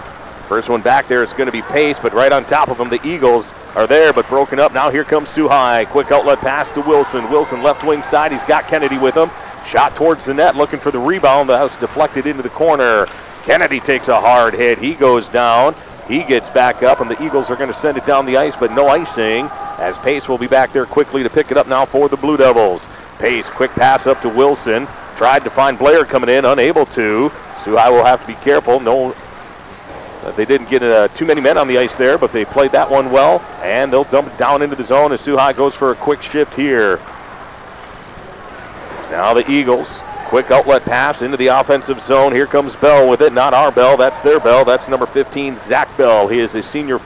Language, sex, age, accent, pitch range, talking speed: English, male, 50-69, American, 130-150 Hz, 230 wpm